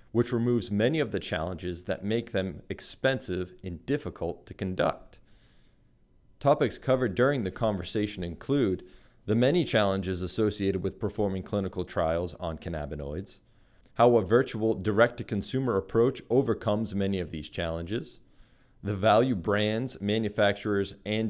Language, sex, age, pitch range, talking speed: English, male, 40-59, 95-120 Hz, 125 wpm